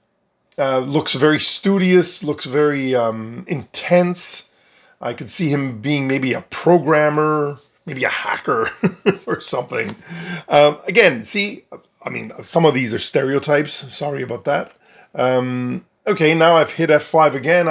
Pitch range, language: 135-175 Hz, English